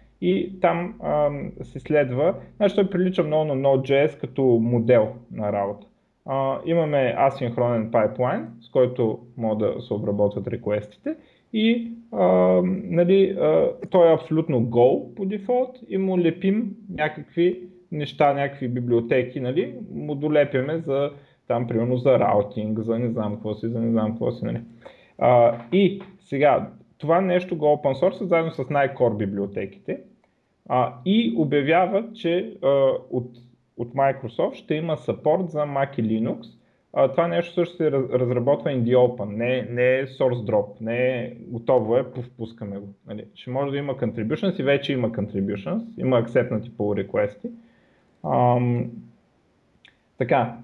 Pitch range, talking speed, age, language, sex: 120-170 Hz, 145 wpm, 30-49, Bulgarian, male